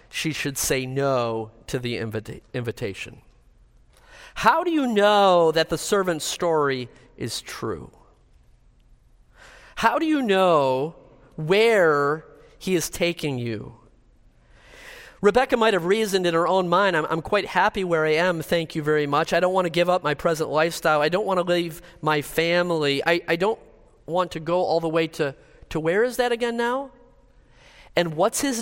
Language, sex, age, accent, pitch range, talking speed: English, male, 40-59, American, 155-220 Hz, 170 wpm